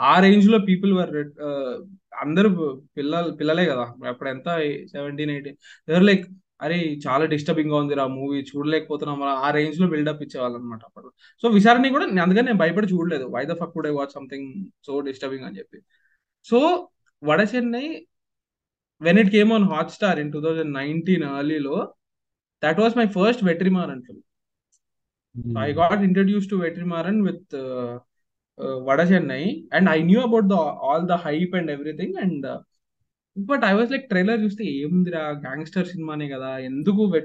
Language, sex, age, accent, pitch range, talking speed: Telugu, male, 20-39, native, 145-190 Hz, 160 wpm